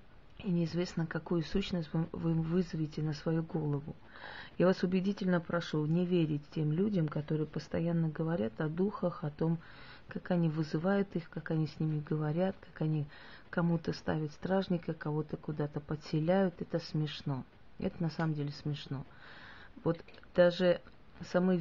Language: Russian